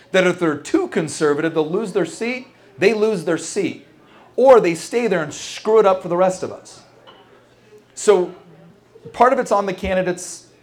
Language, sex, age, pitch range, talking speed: English, male, 30-49, 145-185 Hz, 185 wpm